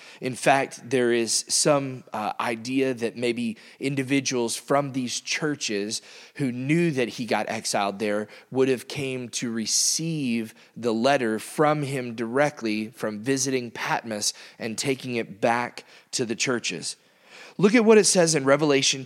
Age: 30-49